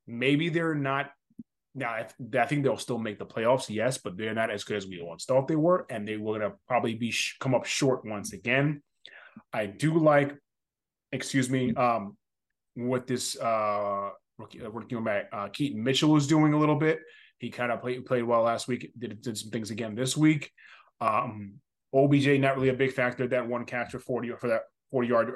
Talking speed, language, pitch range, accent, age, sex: 215 wpm, English, 115-140 Hz, American, 20-39, male